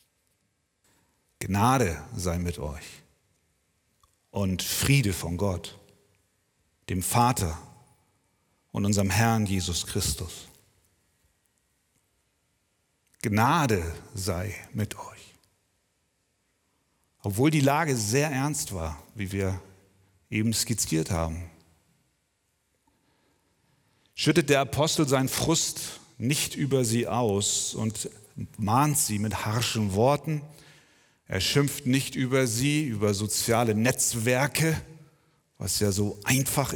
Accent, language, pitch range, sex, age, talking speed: German, German, 100-145 Hz, male, 40-59, 95 wpm